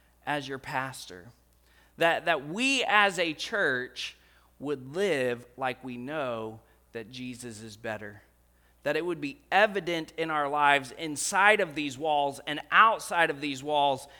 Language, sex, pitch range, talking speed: English, male, 125-200 Hz, 150 wpm